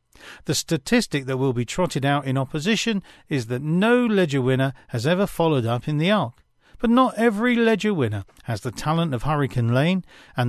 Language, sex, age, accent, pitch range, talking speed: English, male, 40-59, British, 130-210 Hz, 190 wpm